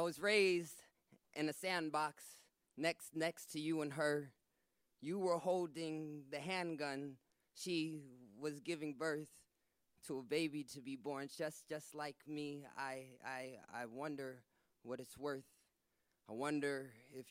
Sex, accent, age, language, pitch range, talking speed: male, American, 20-39, English, 140-175 Hz, 140 wpm